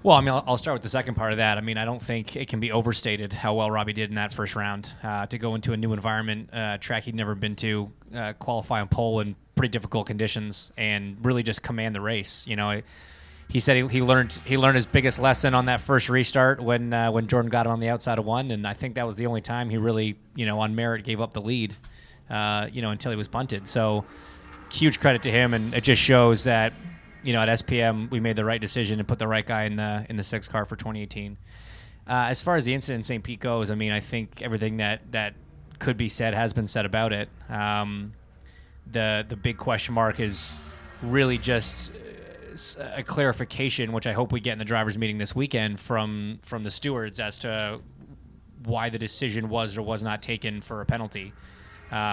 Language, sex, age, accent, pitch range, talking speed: English, male, 20-39, American, 105-120 Hz, 235 wpm